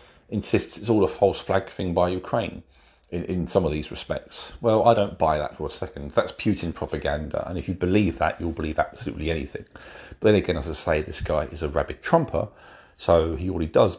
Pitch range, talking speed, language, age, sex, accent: 80-100 Hz, 220 wpm, English, 40-59, male, British